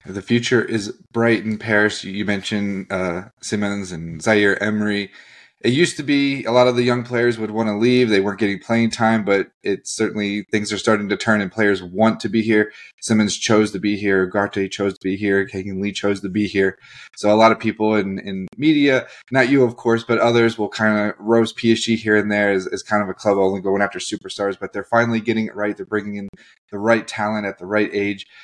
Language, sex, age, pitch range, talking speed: English, male, 20-39, 100-120 Hz, 230 wpm